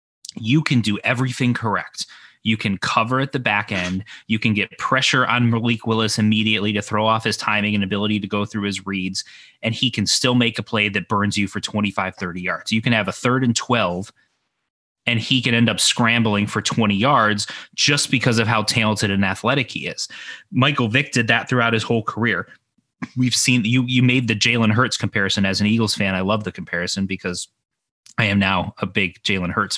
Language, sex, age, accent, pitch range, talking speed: English, male, 20-39, American, 100-120 Hz, 215 wpm